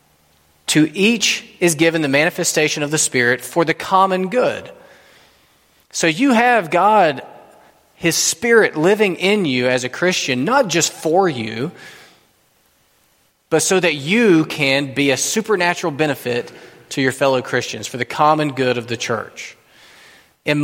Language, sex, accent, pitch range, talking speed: English, male, American, 135-175 Hz, 145 wpm